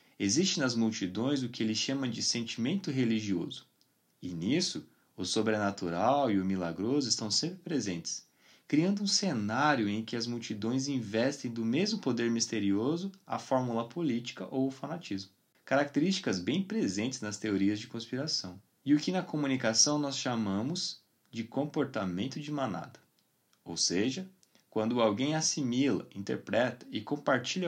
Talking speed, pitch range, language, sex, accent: 140 wpm, 110-160 Hz, Portuguese, male, Brazilian